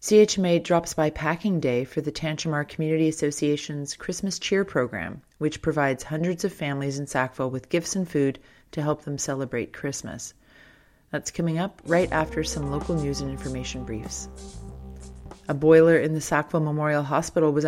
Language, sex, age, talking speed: English, female, 30-49, 165 wpm